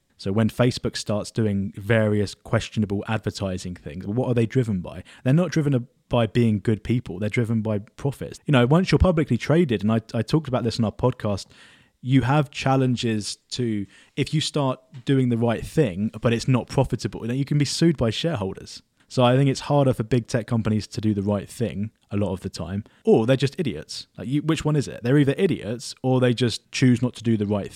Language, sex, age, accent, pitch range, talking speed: English, male, 20-39, British, 110-145 Hz, 225 wpm